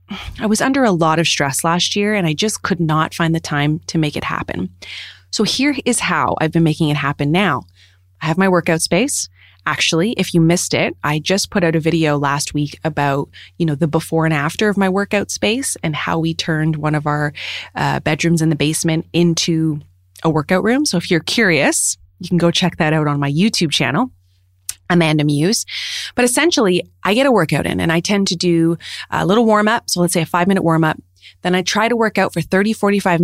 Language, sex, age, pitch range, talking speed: English, female, 20-39, 155-200 Hz, 225 wpm